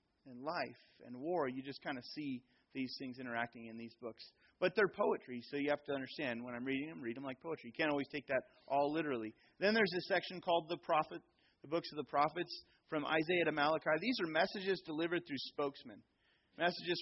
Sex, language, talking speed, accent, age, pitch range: male, English, 215 wpm, American, 30-49, 130-175 Hz